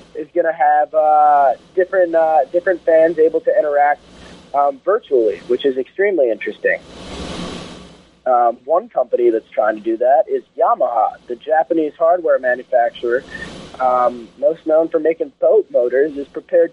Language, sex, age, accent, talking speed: English, male, 30-49, American, 145 wpm